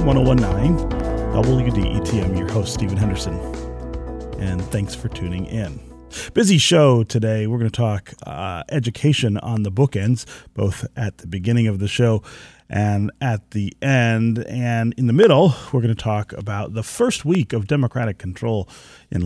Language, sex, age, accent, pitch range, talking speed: English, male, 30-49, American, 95-130 Hz, 155 wpm